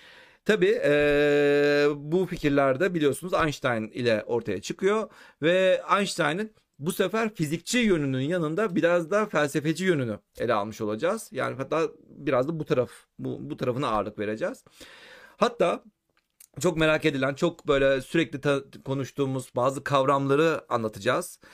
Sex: male